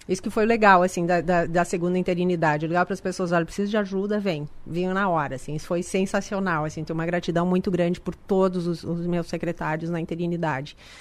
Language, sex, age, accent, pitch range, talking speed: Portuguese, female, 40-59, Brazilian, 175-205 Hz, 220 wpm